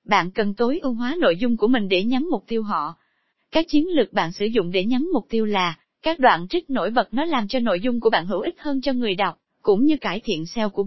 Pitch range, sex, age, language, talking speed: 205-275 Hz, female, 20-39, Vietnamese, 270 wpm